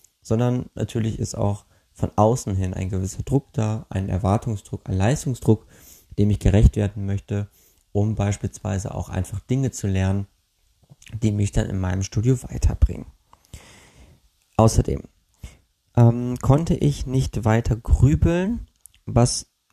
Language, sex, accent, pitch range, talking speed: German, male, German, 95-120 Hz, 130 wpm